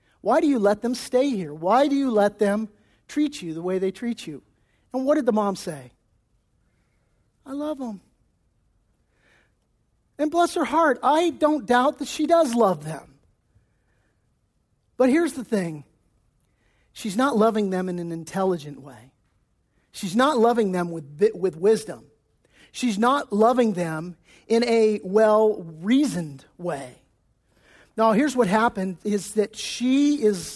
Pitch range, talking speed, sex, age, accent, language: 160-245 Hz, 145 wpm, male, 50-69, American, English